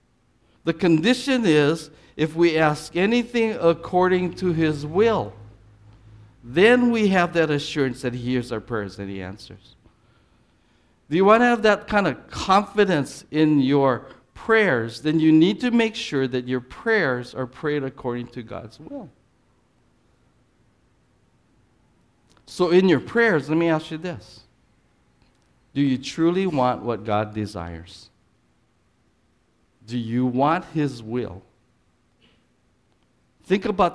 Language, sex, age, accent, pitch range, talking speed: English, male, 50-69, American, 120-180 Hz, 130 wpm